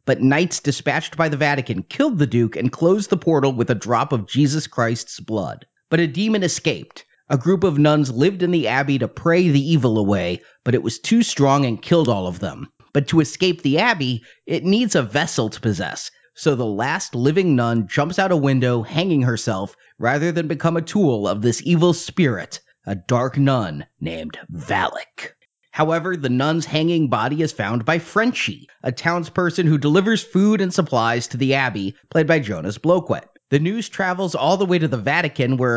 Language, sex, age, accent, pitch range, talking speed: English, male, 30-49, American, 125-170 Hz, 195 wpm